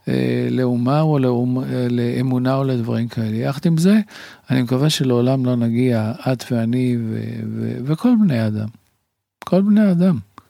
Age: 50-69